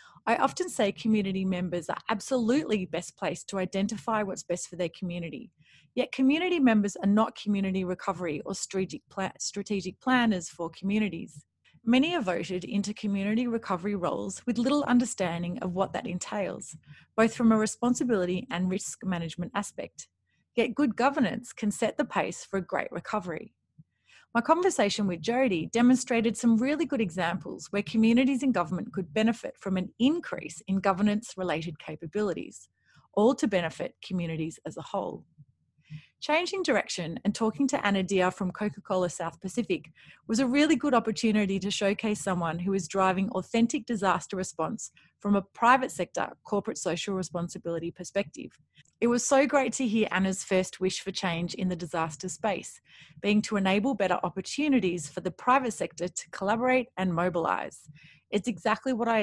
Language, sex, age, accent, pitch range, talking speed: English, female, 30-49, Australian, 175-230 Hz, 160 wpm